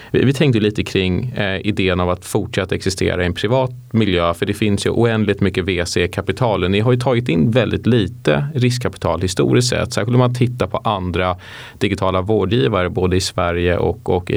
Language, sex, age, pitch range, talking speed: Swedish, male, 30-49, 90-115 Hz, 185 wpm